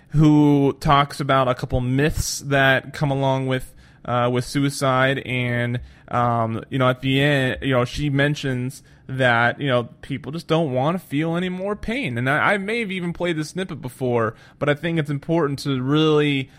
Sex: male